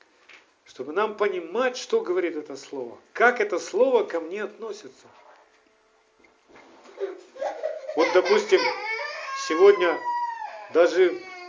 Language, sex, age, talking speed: Russian, male, 50-69, 90 wpm